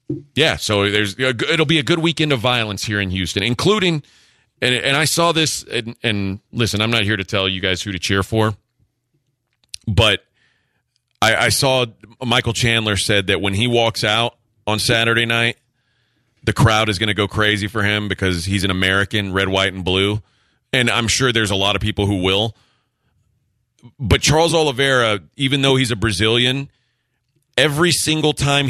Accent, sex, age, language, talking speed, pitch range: American, male, 30-49, English, 180 wpm, 100-125 Hz